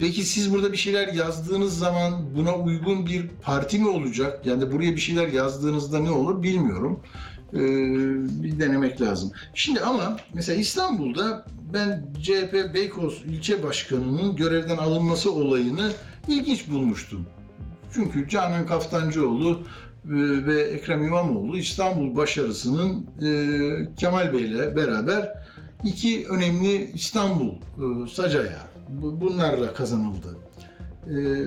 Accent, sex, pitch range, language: native, male, 140-195 Hz, Turkish